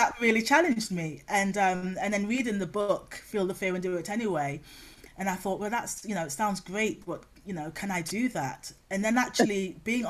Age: 30-49